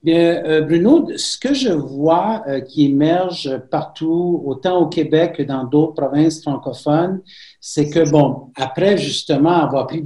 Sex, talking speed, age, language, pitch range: male, 135 wpm, 60-79, French, 135-175 Hz